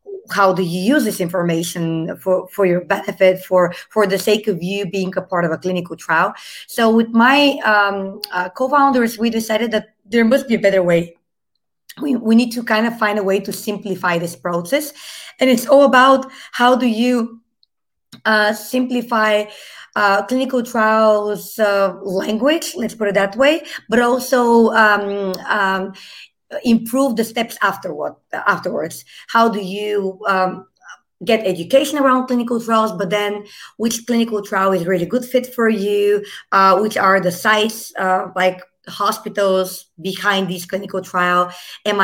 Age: 20-39